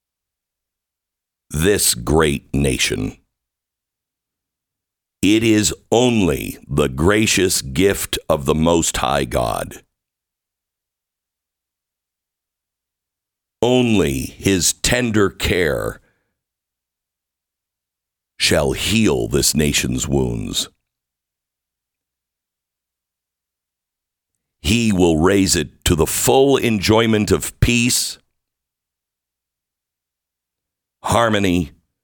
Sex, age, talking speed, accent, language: male, 60-79, 65 wpm, American, English